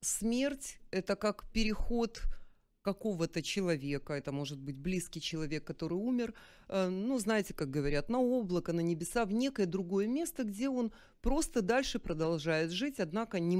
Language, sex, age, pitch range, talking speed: Ukrainian, female, 30-49, 170-215 Hz, 150 wpm